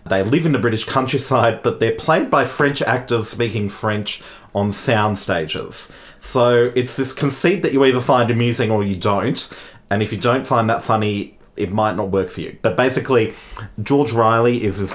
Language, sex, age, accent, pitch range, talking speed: English, male, 30-49, Australian, 100-120 Hz, 195 wpm